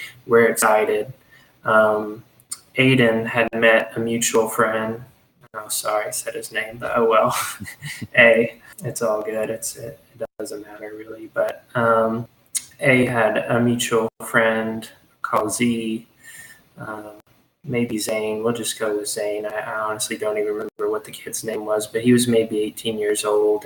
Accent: American